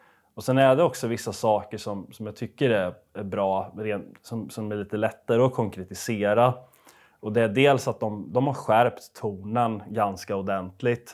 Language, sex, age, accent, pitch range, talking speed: Swedish, male, 20-39, native, 100-120 Hz, 180 wpm